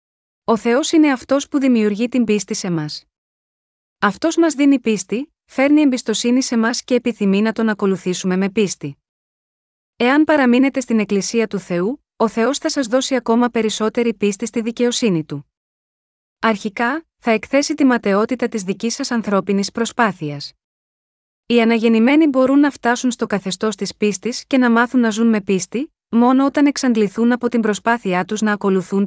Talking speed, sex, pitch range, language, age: 160 wpm, female, 205-245 Hz, Greek, 30-49